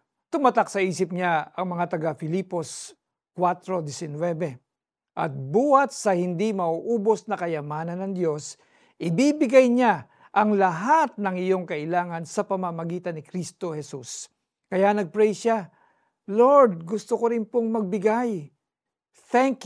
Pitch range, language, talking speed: 170-220 Hz, Filipino, 120 wpm